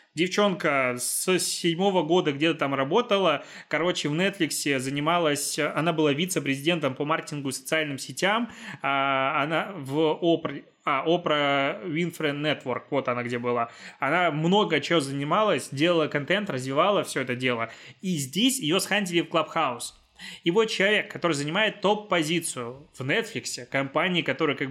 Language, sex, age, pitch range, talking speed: Russian, male, 20-39, 140-185 Hz, 135 wpm